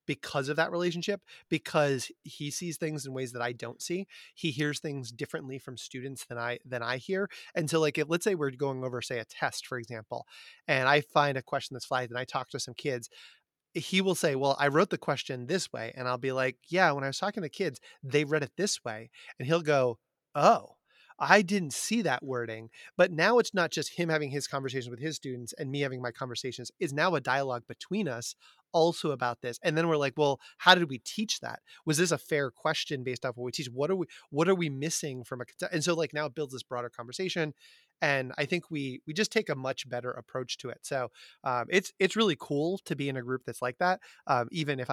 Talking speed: 240 wpm